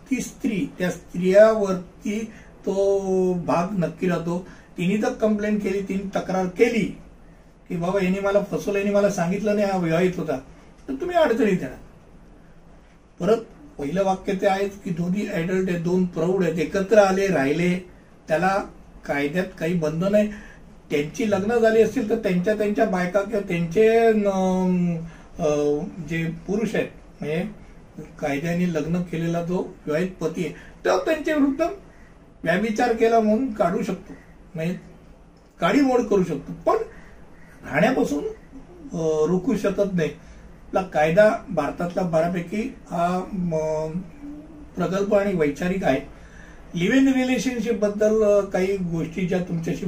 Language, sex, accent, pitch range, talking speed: Hindi, male, native, 175-215 Hz, 75 wpm